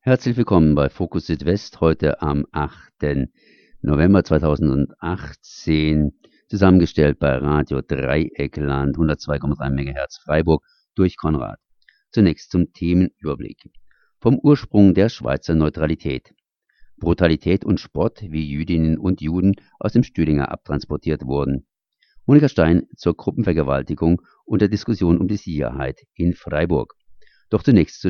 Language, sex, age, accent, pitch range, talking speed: German, male, 50-69, German, 75-90 Hz, 115 wpm